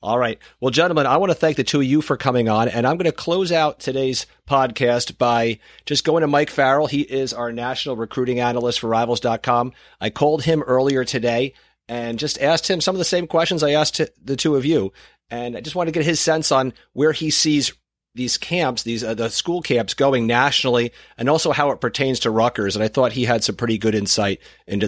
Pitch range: 110-140 Hz